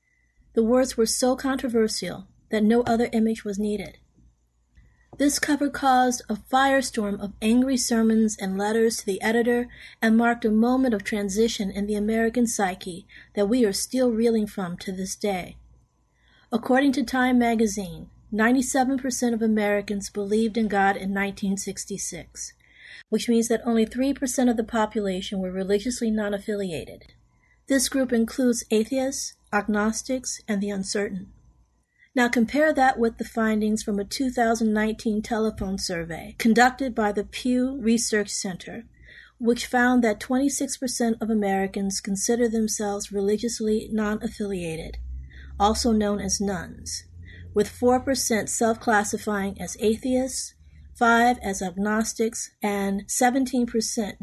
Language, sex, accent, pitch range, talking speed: English, female, American, 200-240 Hz, 125 wpm